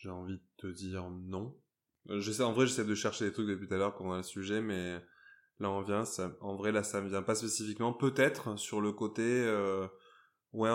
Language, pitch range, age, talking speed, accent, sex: French, 95-110 Hz, 20-39, 230 wpm, French, male